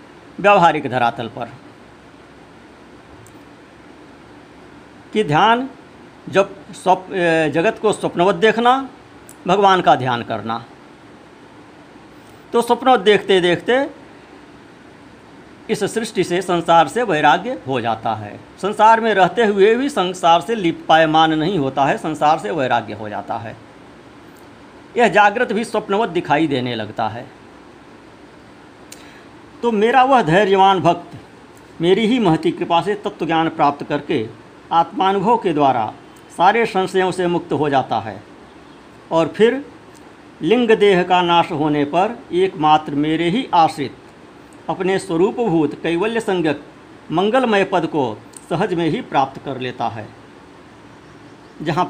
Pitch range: 160-215 Hz